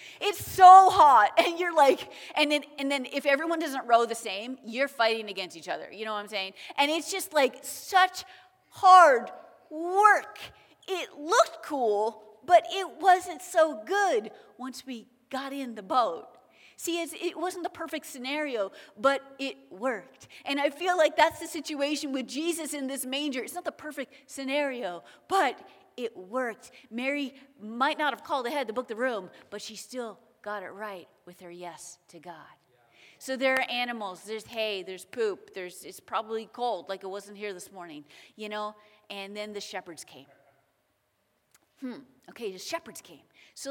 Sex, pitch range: female, 215-310 Hz